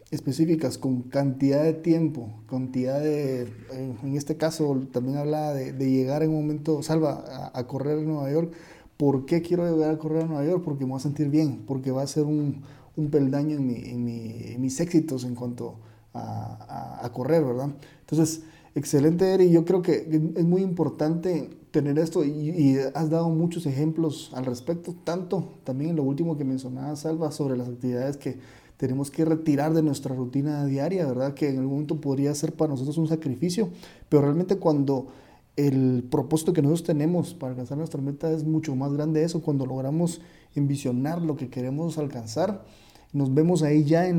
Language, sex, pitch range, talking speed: Spanish, male, 135-160 Hz, 190 wpm